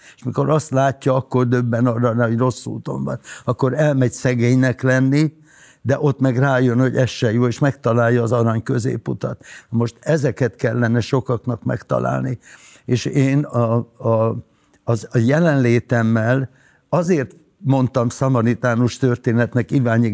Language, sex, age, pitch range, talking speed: Hungarian, male, 60-79, 115-135 Hz, 135 wpm